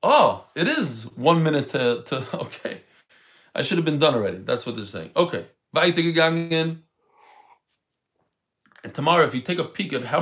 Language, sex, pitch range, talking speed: English, male, 160-215 Hz, 165 wpm